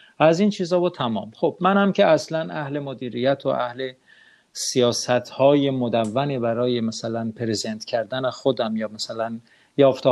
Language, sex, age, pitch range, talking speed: Arabic, male, 50-69, 120-160 Hz, 140 wpm